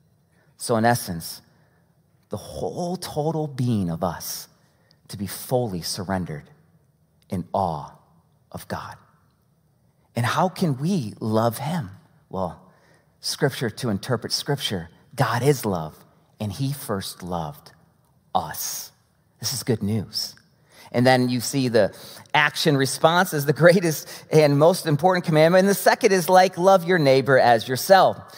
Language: English